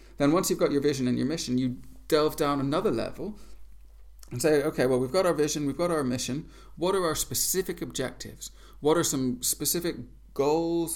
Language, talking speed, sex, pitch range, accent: English, 195 wpm, male, 120-155 Hz, British